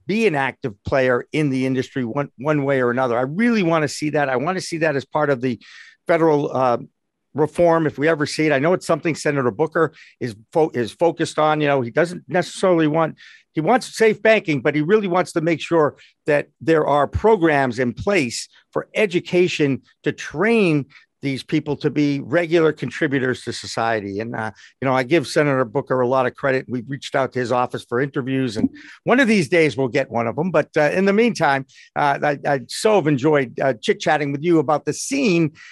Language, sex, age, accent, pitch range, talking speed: English, male, 50-69, American, 135-175 Hz, 220 wpm